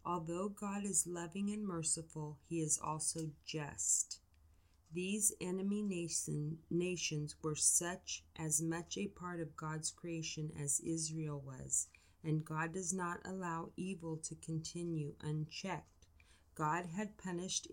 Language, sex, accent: English, female, American